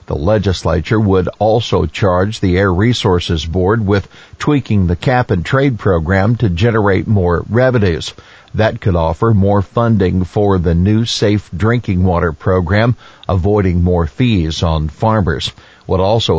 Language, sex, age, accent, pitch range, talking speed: English, male, 50-69, American, 95-120 Hz, 135 wpm